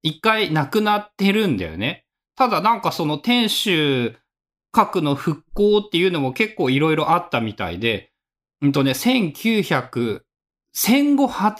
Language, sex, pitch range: Japanese, male, 135-210 Hz